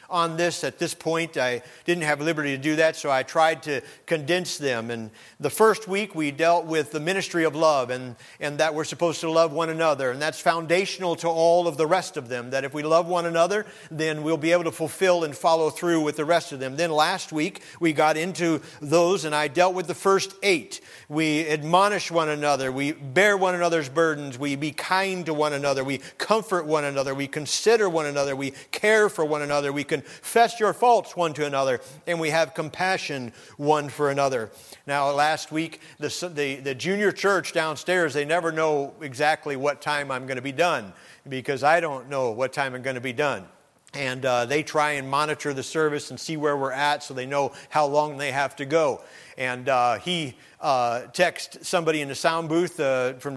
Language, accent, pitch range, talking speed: English, American, 140-170 Hz, 210 wpm